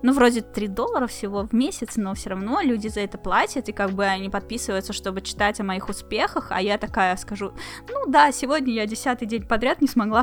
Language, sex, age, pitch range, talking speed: Russian, female, 10-29, 195-245 Hz, 215 wpm